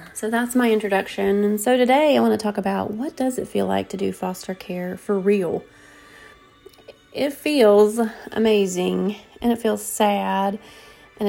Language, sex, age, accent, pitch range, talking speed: English, female, 30-49, American, 200-245 Hz, 165 wpm